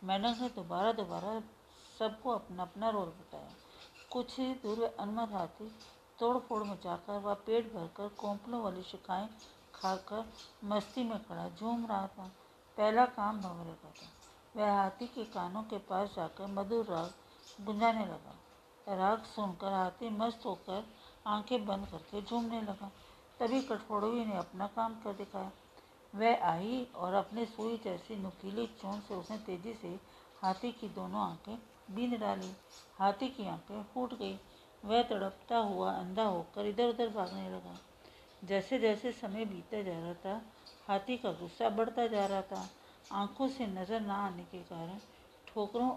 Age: 50-69